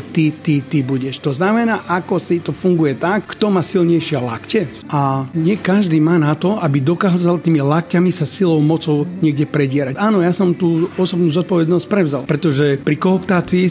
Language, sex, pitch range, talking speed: Slovak, male, 150-180 Hz, 175 wpm